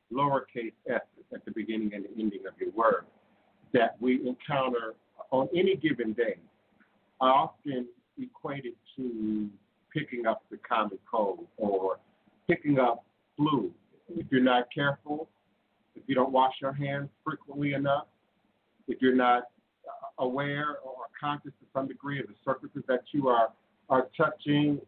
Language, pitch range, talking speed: English, 120-150 Hz, 145 wpm